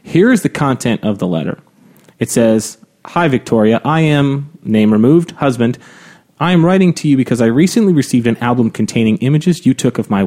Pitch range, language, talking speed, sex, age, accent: 115-150 Hz, English, 195 wpm, male, 30-49, American